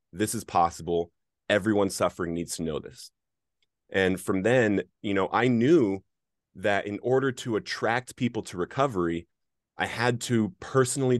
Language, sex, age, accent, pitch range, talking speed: English, male, 30-49, American, 95-120 Hz, 150 wpm